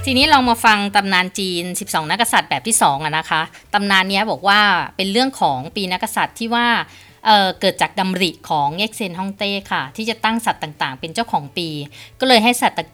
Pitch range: 170-230 Hz